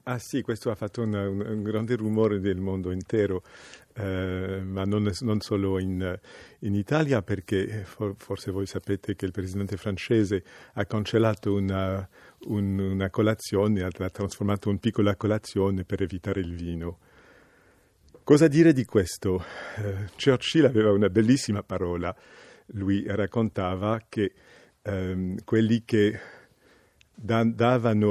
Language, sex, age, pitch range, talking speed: Italian, male, 50-69, 95-110 Hz, 130 wpm